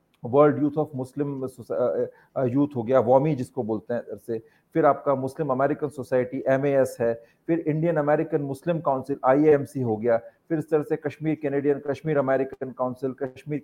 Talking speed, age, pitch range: 170 wpm, 40-59, 135-180 Hz